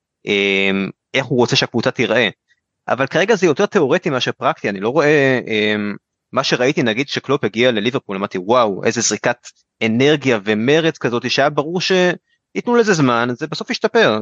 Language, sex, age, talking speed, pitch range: Hebrew, male, 20-39, 150 wpm, 110-155 Hz